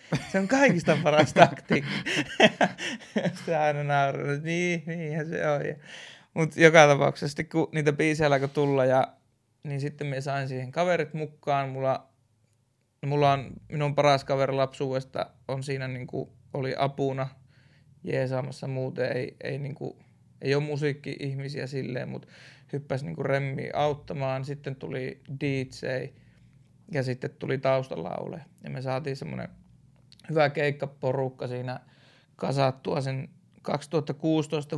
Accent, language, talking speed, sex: native, Finnish, 125 wpm, male